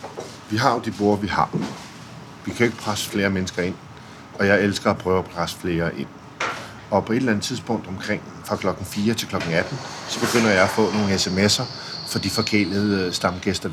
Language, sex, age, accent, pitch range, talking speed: Danish, male, 50-69, native, 100-120 Hz, 205 wpm